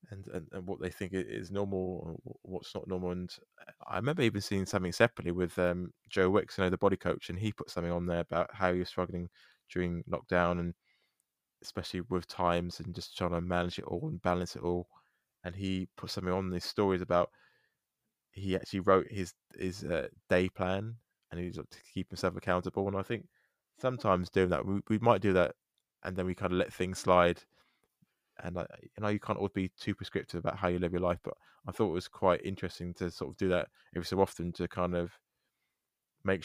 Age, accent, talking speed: 20-39, British, 215 wpm